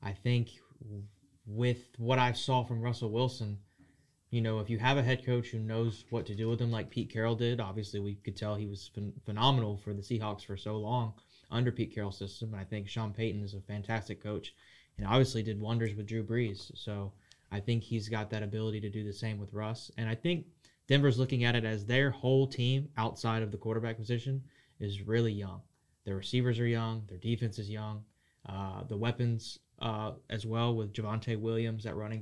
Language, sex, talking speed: English, male, 205 wpm